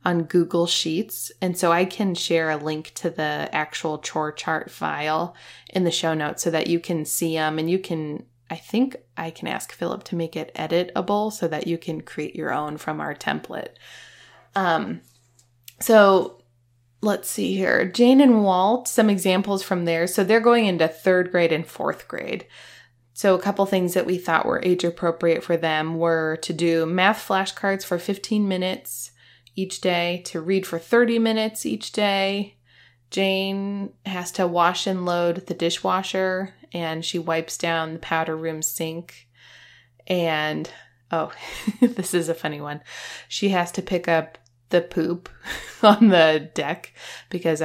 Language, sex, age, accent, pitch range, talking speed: English, female, 20-39, American, 160-190 Hz, 165 wpm